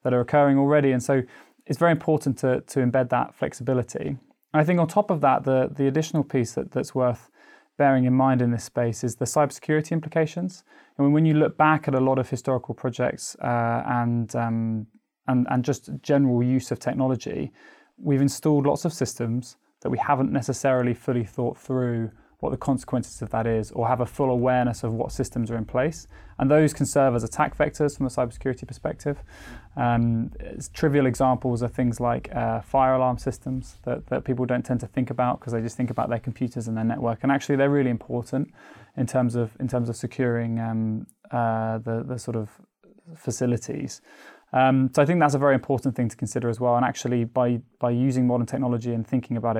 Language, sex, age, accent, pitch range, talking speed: English, male, 20-39, British, 120-140 Hz, 205 wpm